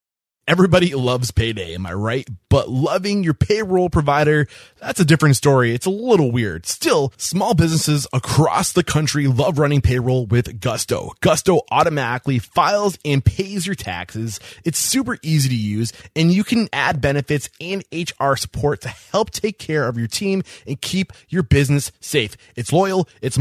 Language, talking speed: English, 165 wpm